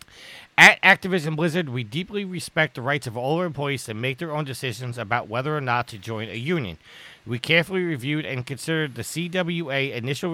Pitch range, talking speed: 125-160 Hz, 190 wpm